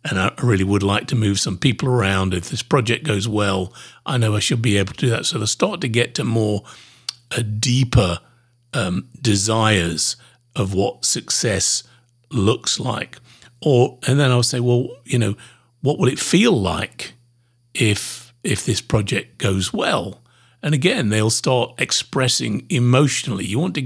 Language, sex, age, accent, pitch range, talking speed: English, male, 50-69, British, 105-130 Hz, 170 wpm